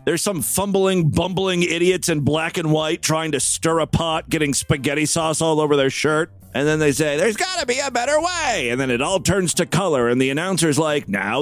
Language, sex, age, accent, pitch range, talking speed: English, male, 40-59, American, 125-205 Hz, 230 wpm